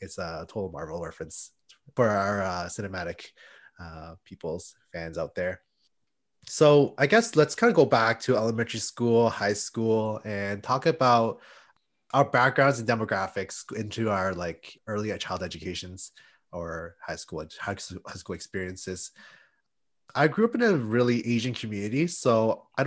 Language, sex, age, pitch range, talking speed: English, male, 20-39, 100-130 Hz, 145 wpm